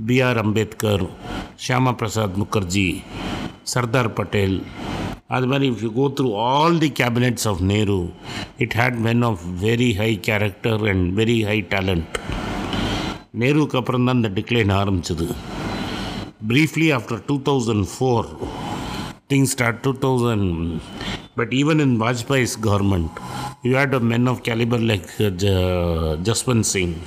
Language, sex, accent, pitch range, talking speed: Tamil, male, native, 100-125 Hz, 120 wpm